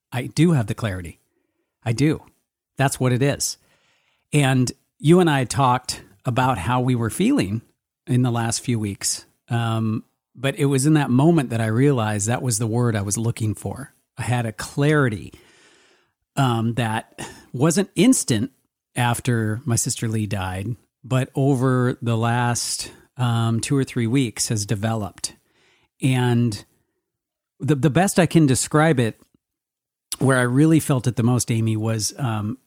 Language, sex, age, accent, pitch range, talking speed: English, male, 40-59, American, 115-140 Hz, 160 wpm